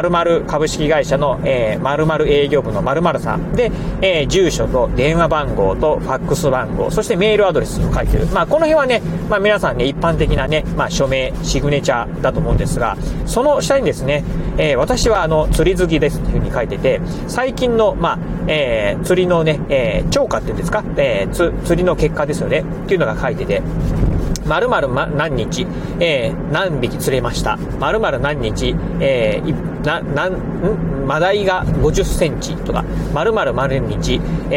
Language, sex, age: Japanese, male, 40-59